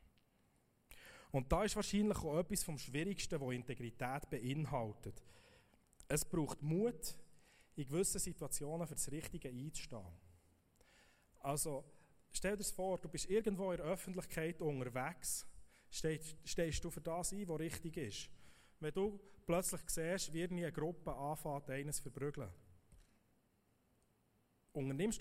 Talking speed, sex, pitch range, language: 125 wpm, male, 130-170 Hz, German